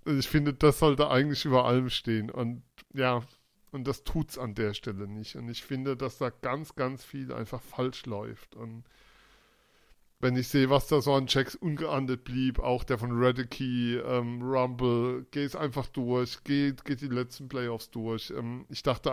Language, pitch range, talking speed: German, 120-130 Hz, 180 wpm